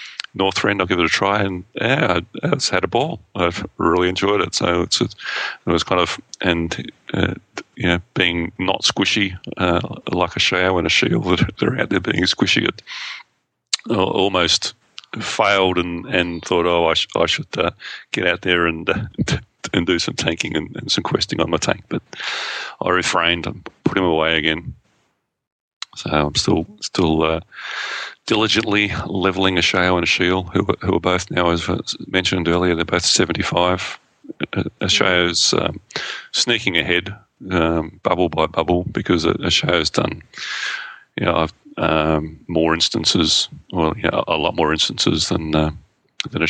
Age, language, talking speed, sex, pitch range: 40-59, English, 175 wpm, male, 80-95 Hz